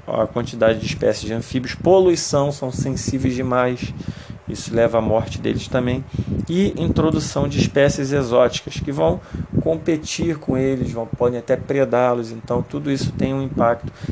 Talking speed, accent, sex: 150 wpm, Brazilian, male